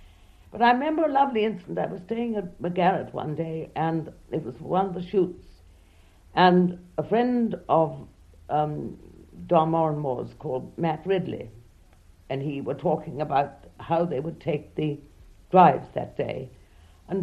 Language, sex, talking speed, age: English, female, 155 wpm, 60-79